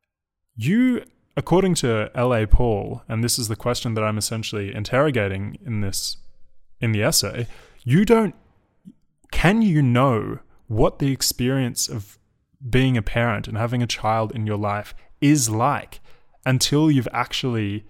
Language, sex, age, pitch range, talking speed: English, male, 20-39, 105-135 Hz, 145 wpm